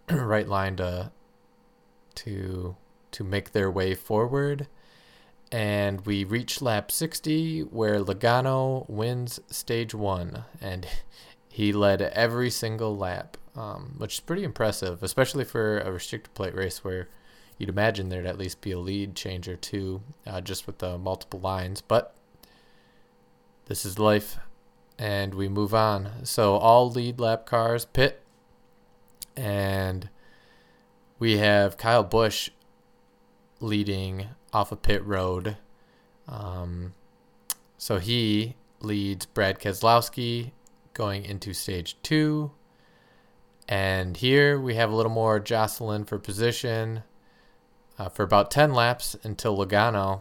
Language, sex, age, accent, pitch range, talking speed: English, male, 20-39, American, 95-115 Hz, 125 wpm